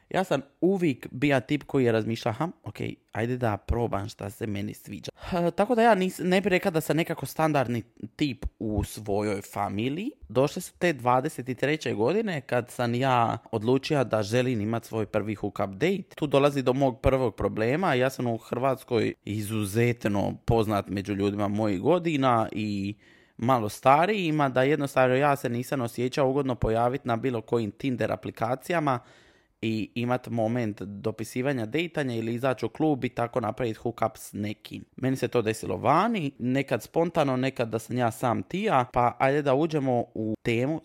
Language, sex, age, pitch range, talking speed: Croatian, male, 20-39, 110-140 Hz, 170 wpm